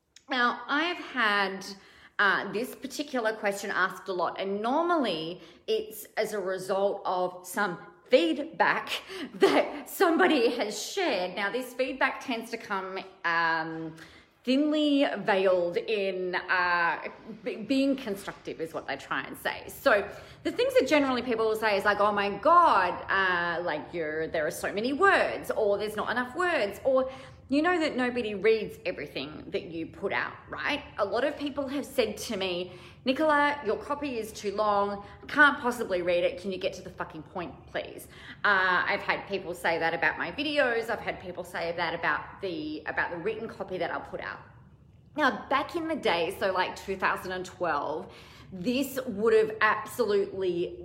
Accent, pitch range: Australian, 185-275 Hz